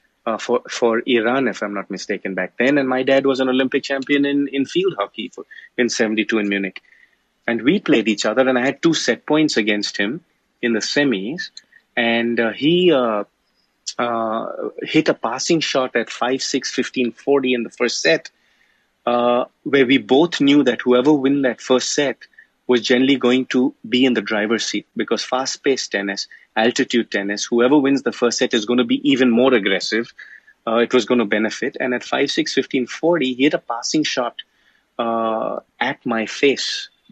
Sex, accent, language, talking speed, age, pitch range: male, Indian, English, 190 wpm, 30-49, 115-135 Hz